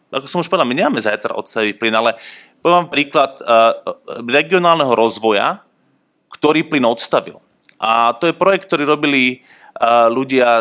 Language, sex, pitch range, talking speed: Slovak, male, 110-145 Hz, 140 wpm